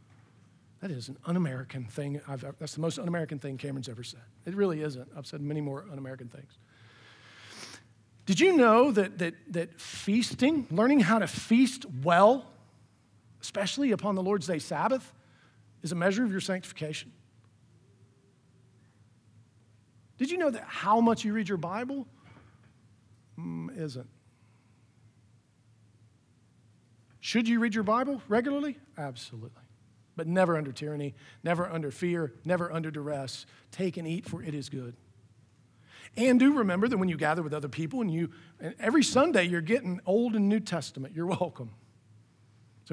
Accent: American